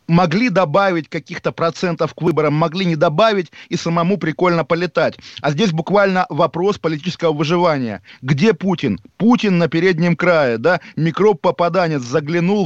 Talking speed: 135 wpm